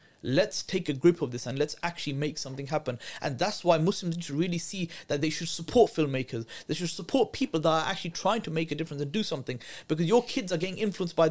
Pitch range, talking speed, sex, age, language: 150-210 Hz, 250 wpm, male, 30-49, English